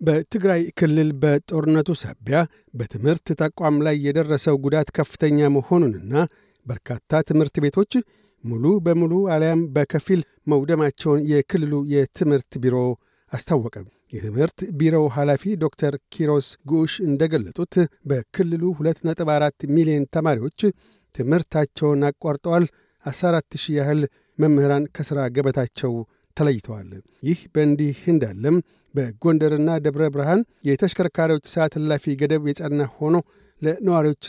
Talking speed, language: 100 wpm, Amharic